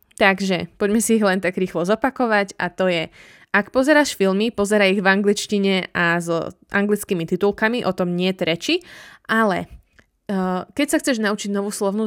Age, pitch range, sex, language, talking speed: 20-39, 185-225 Hz, female, Slovak, 175 wpm